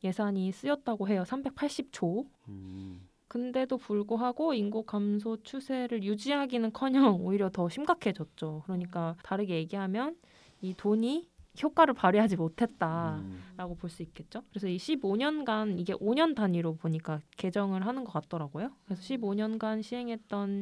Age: 20-39